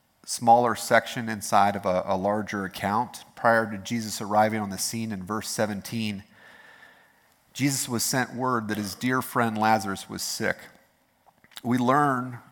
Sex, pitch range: male, 100-115 Hz